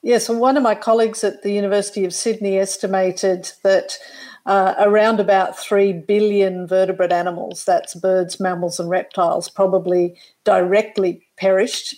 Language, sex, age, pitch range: English, female, 50-69, 185-215 Hz